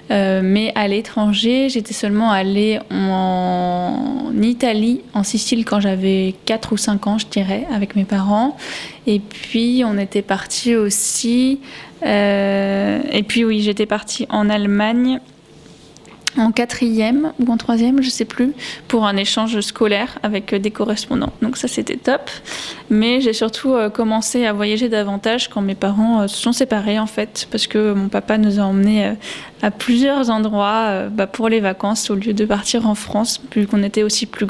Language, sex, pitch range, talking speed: French, female, 205-235 Hz, 165 wpm